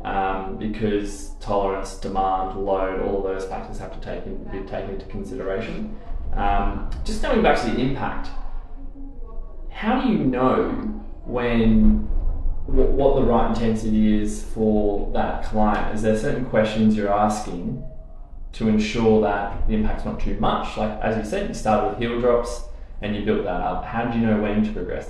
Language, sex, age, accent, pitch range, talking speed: English, male, 20-39, Australian, 95-110 Hz, 165 wpm